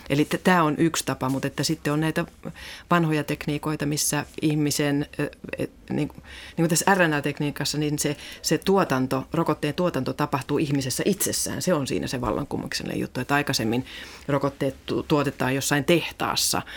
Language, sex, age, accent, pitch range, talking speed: Finnish, female, 30-49, native, 130-150 Hz, 170 wpm